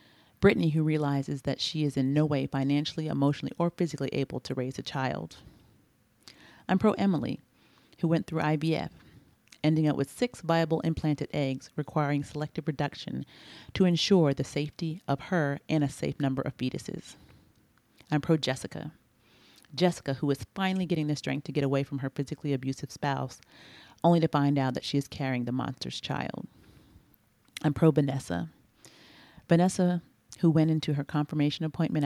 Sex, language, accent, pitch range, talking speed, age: female, English, American, 135-160 Hz, 155 wpm, 40-59